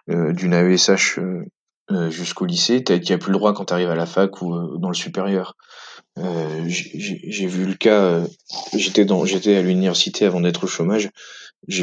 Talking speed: 195 wpm